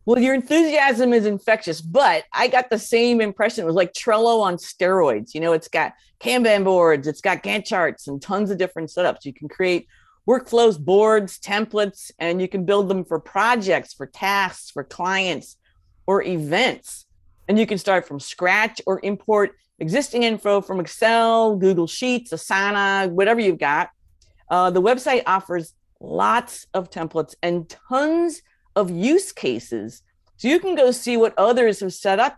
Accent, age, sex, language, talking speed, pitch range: American, 50-69, female, English, 170 wpm, 165-225 Hz